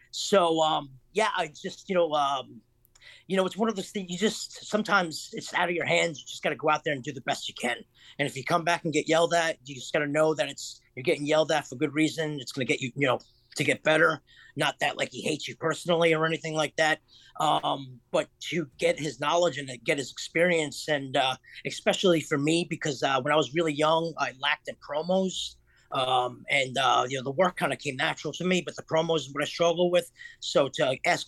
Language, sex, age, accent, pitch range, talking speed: English, male, 30-49, American, 140-170 Hz, 250 wpm